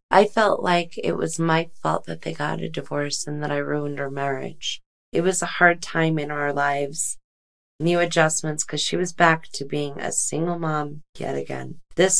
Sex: female